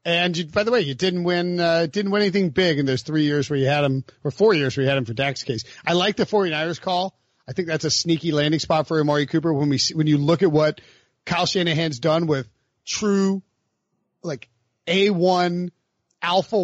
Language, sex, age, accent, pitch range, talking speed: English, male, 40-59, American, 135-180 Hz, 220 wpm